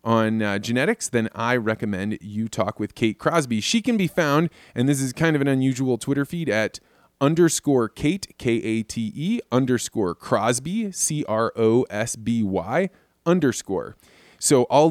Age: 20-39